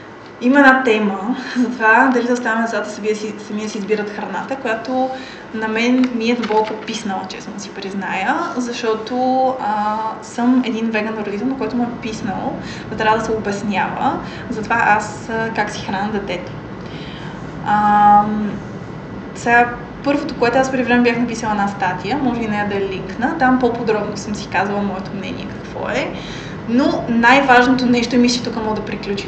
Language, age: Bulgarian, 20-39